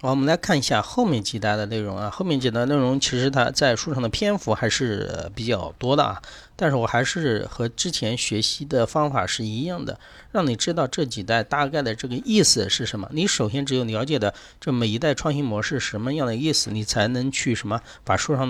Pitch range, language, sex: 110-145 Hz, Chinese, male